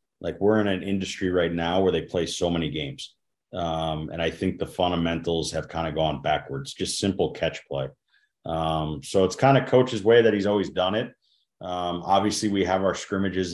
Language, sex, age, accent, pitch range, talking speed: English, male, 30-49, American, 80-95 Hz, 205 wpm